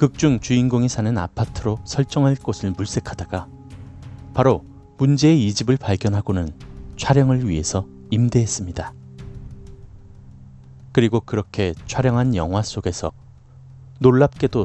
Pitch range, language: 90-130 Hz, Korean